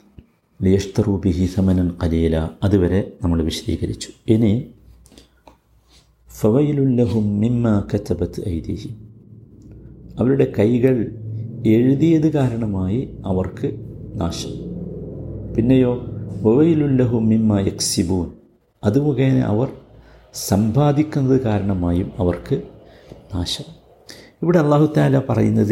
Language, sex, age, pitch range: Malayalam, male, 50-69, 95-130 Hz